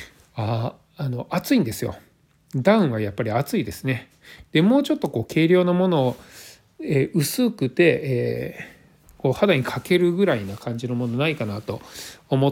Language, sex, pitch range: Japanese, male, 115-165 Hz